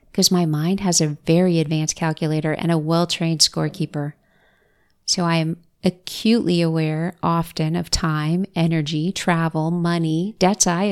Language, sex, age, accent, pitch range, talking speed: English, female, 30-49, American, 160-185 Hz, 135 wpm